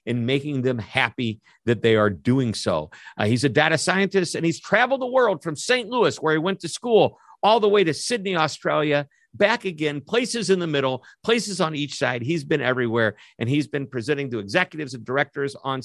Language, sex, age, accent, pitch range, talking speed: English, male, 50-69, American, 115-155 Hz, 210 wpm